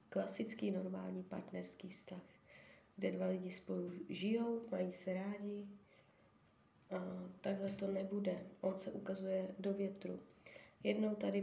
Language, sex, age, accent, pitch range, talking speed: Czech, female, 20-39, native, 175-195 Hz, 120 wpm